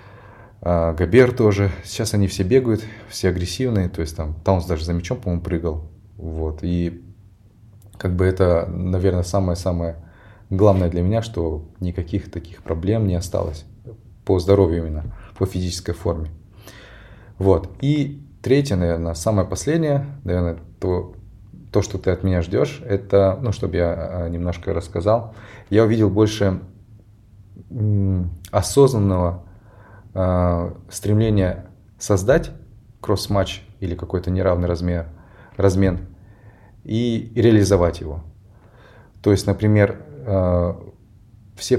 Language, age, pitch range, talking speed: Russian, 20-39, 90-105 Hz, 115 wpm